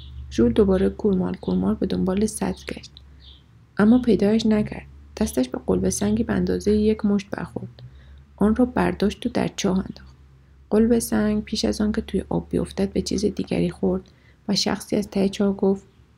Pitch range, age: 185-230 Hz, 30-49